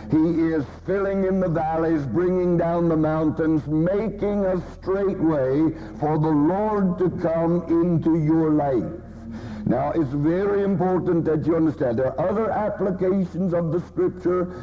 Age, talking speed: 60-79, 150 wpm